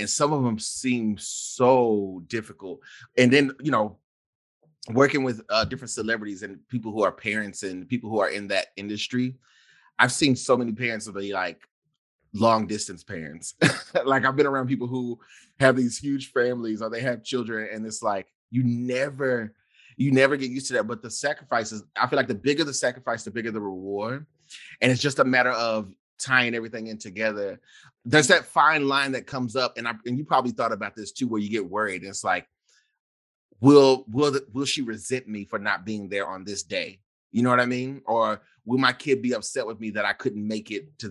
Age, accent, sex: 30-49, American, male